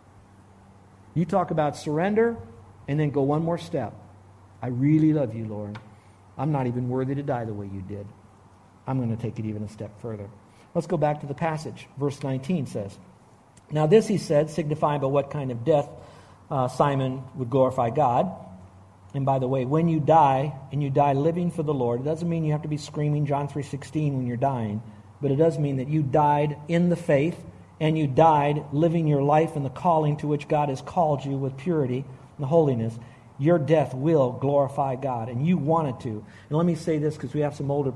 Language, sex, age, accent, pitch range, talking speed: English, male, 50-69, American, 120-155 Hz, 210 wpm